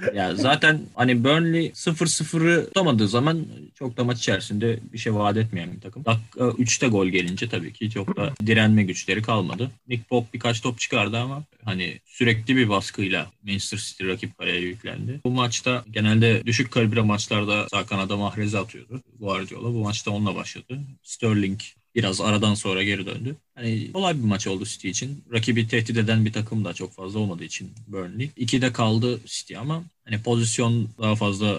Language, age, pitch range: Turkish, 30-49, 100-120 Hz